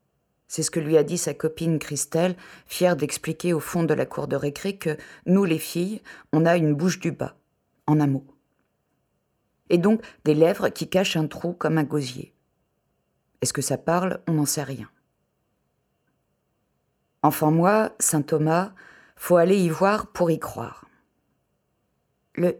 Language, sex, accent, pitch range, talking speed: French, female, French, 150-180 Hz, 165 wpm